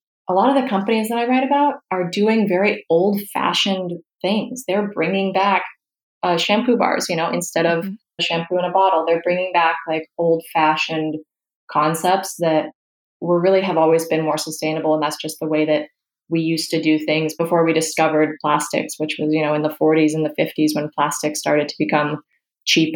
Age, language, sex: 20-39, English, female